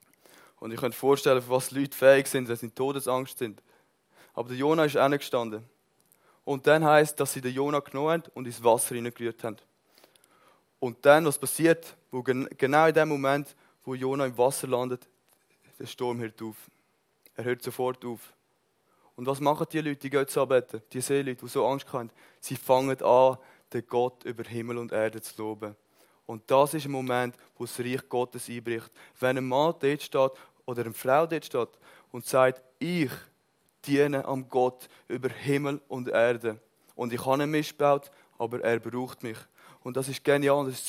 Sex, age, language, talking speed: male, 20-39, German, 190 wpm